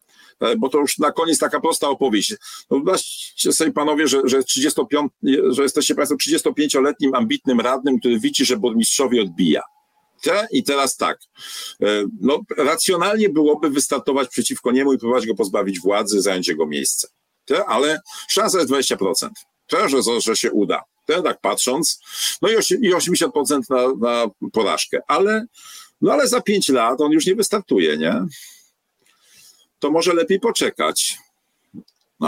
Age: 50-69